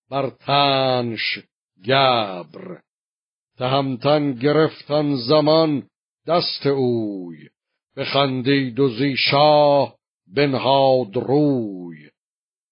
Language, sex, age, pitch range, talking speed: Persian, male, 50-69, 120-145 Hz, 60 wpm